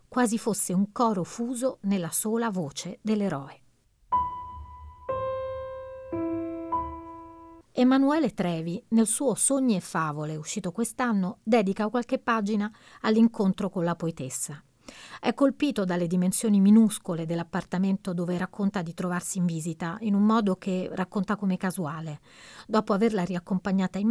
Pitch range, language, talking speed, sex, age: 180-230 Hz, Italian, 120 wpm, female, 40-59